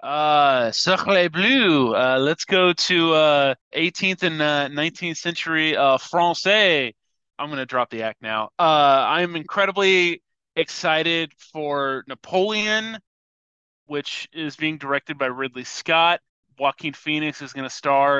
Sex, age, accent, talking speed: male, 20-39, American, 130 wpm